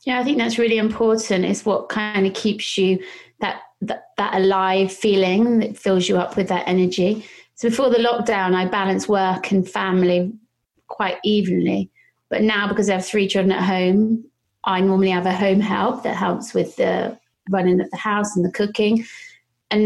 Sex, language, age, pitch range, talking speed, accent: female, English, 30-49, 185-215 Hz, 185 wpm, British